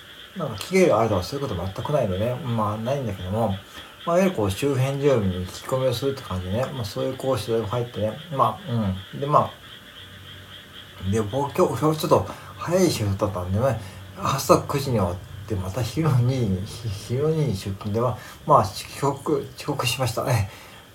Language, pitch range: Japanese, 100-135 Hz